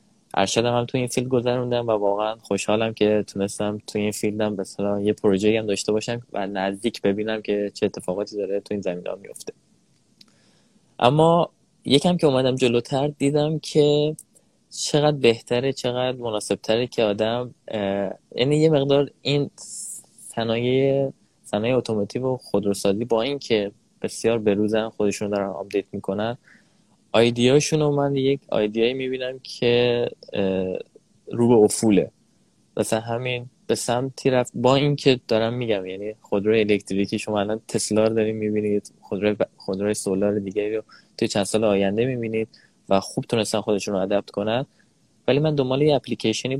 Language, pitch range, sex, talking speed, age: Persian, 105-125 Hz, male, 140 wpm, 20-39